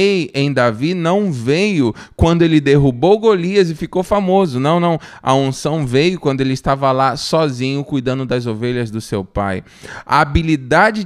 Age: 20-39